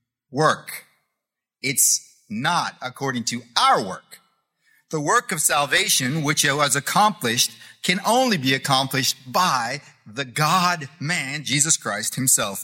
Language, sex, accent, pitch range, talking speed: English, male, American, 135-190 Hz, 120 wpm